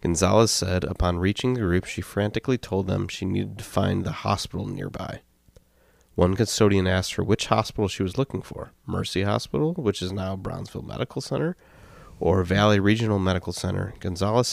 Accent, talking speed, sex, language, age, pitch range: American, 170 wpm, male, English, 30-49, 90-105 Hz